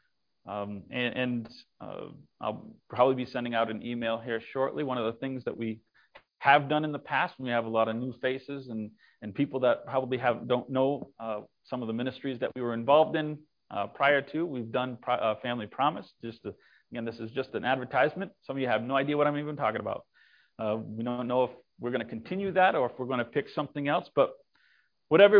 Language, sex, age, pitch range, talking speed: English, male, 40-59, 125-195 Hz, 230 wpm